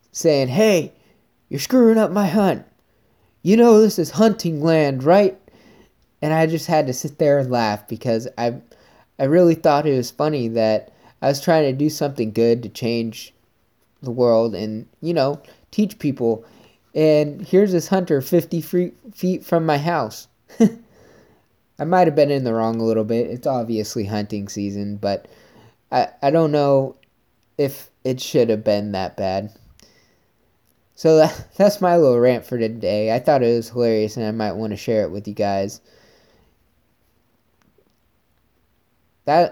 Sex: male